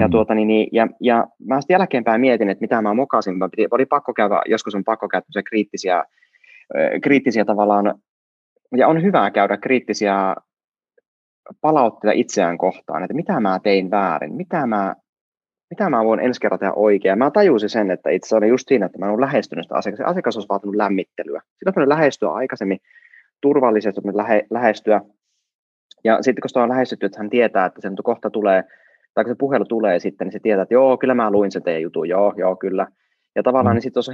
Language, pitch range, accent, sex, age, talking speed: Finnish, 100-135 Hz, native, male, 20-39, 190 wpm